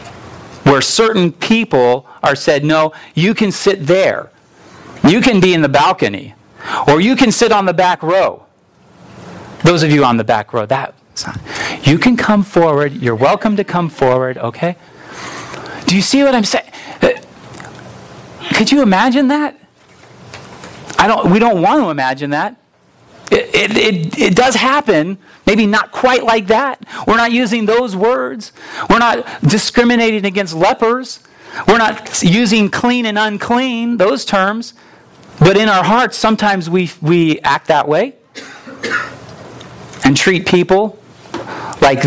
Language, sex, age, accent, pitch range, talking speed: English, male, 40-59, American, 150-225 Hz, 145 wpm